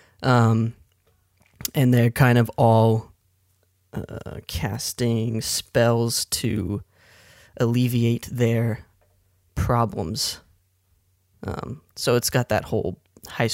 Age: 20-39